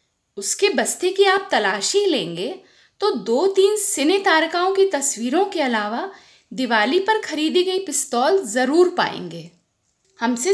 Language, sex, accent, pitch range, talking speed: Hindi, female, native, 230-380 Hz, 125 wpm